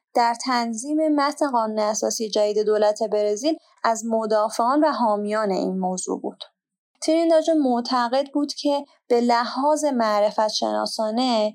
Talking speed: 120 wpm